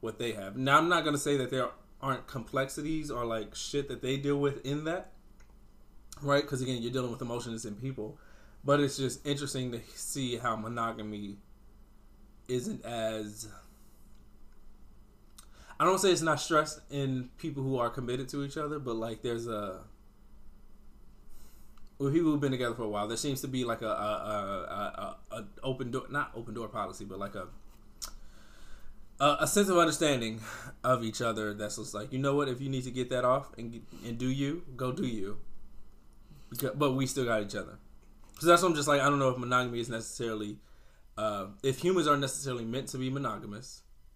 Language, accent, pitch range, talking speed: English, American, 110-140 Hz, 190 wpm